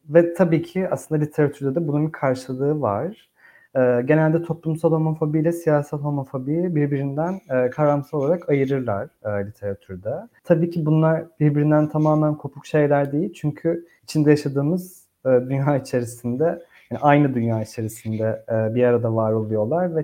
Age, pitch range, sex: 30-49, 130-170 Hz, male